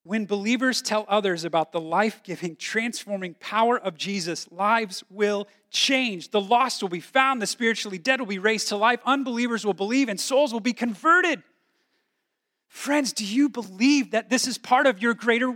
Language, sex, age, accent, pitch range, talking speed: English, male, 30-49, American, 180-260 Hz, 175 wpm